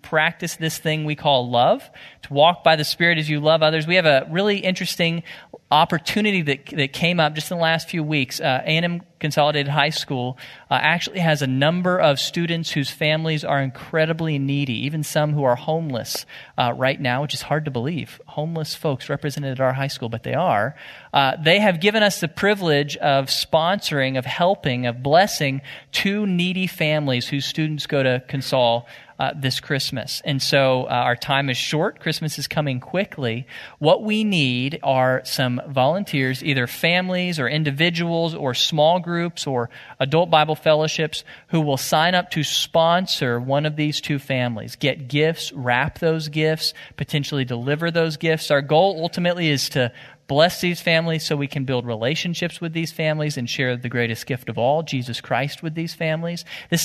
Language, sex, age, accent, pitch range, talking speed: English, male, 40-59, American, 135-165 Hz, 180 wpm